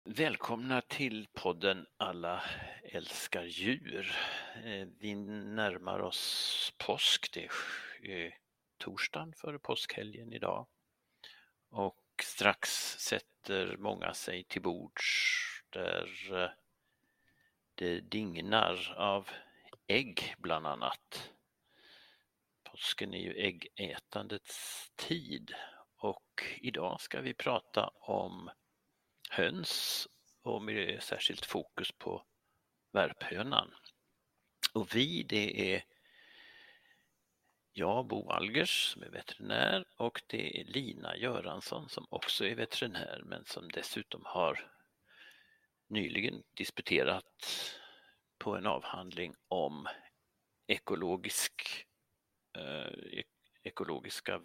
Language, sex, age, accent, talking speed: Swedish, male, 60-79, native, 85 wpm